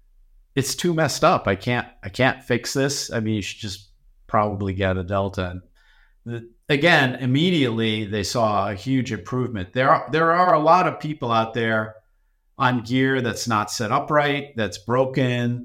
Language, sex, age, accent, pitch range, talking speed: English, male, 50-69, American, 110-140 Hz, 175 wpm